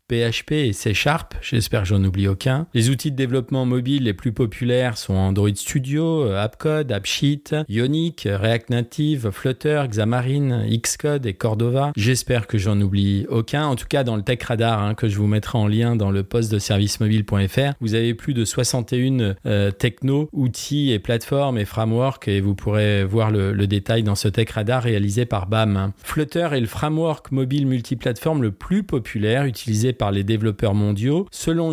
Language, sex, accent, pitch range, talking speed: French, male, French, 105-135 Hz, 180 wpm